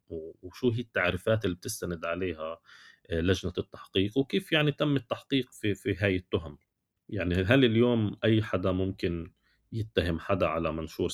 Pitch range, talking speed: 85-110 Hz, 140 wpm